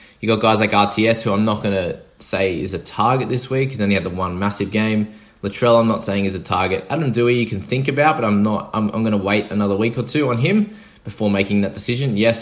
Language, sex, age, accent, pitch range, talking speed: English, male, 20-39, Australian, 95-120 Hz, 265 wpm